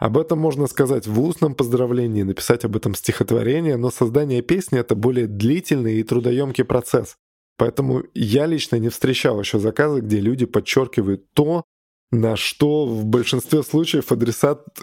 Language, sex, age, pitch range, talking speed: Russian, male, 20-39, 115-140 Hz, 150 wpm